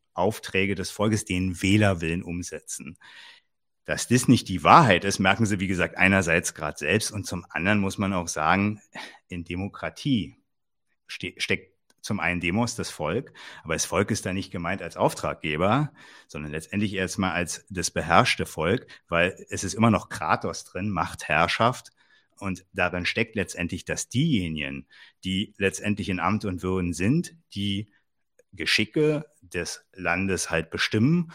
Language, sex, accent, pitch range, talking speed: German, male, German, 90-115 Hz, 150 wpm